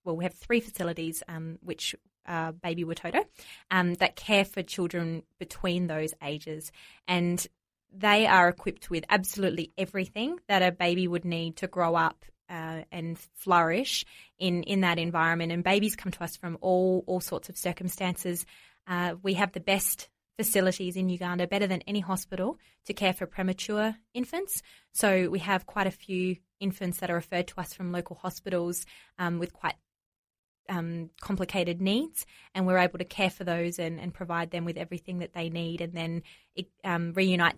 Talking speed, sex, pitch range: 175 wpm, female, 170-190 Hz